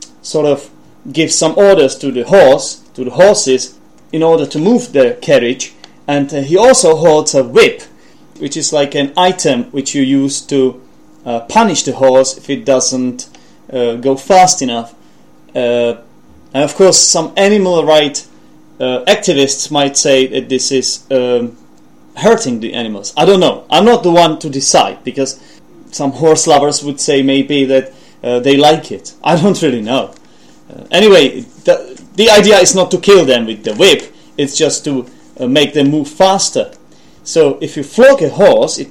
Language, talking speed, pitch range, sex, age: English, 175 wpm, 135-200 Hz, male, 30-49